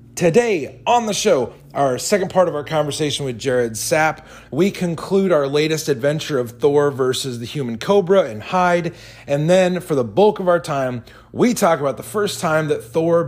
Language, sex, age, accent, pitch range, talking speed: English, male, 30-49, American, 140-185 Hz, 190 wpm